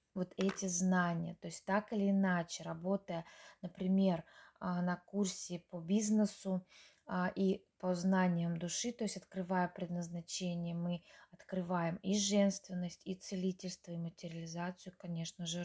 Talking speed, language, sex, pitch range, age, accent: 125 wpm, Russian, female, 175-195 Hz, 20-39, native